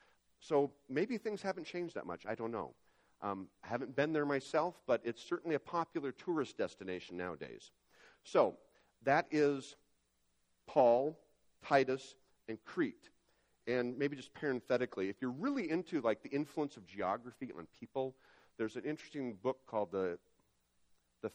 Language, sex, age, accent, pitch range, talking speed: English, male, 50-69, American, 95-140 Hz, 150 wpm